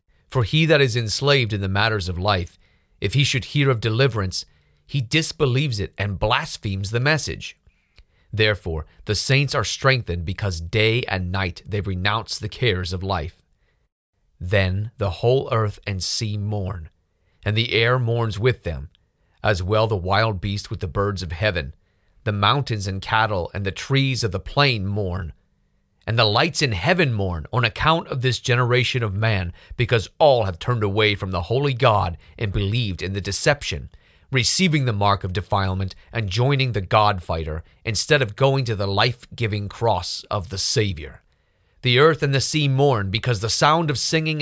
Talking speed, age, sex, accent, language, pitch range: 175 wpm, 40-59, male, American, English, 95-125 Hz